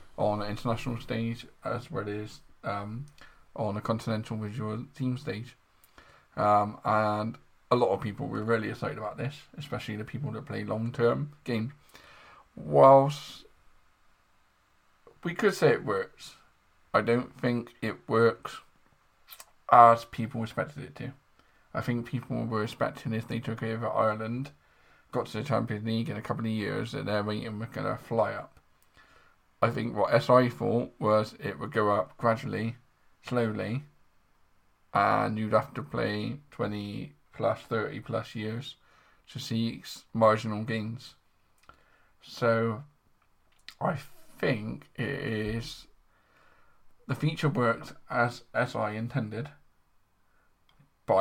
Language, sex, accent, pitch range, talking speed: English, male, British, 110-125 Hz, 135 wpm